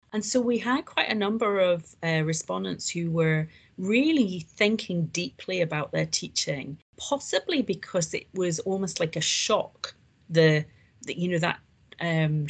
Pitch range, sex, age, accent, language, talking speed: 155-195 Hz, female, 30-49, British, English, 155 wpm